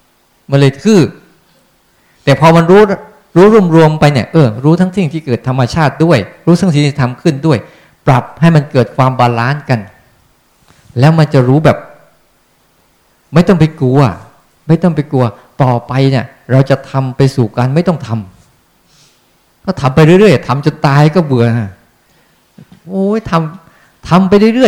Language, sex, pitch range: Thai, male, 125-175 Hz